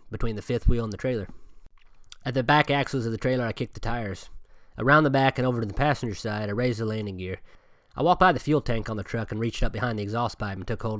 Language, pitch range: English, 105-130 Hz